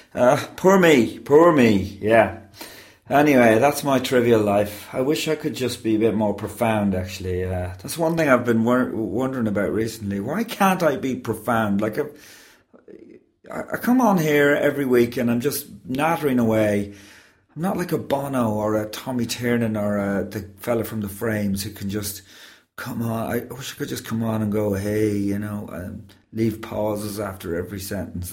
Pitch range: 105-145 Hz